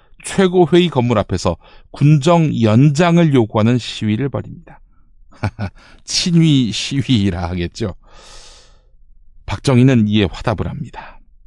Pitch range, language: 100-150 Hz, Korean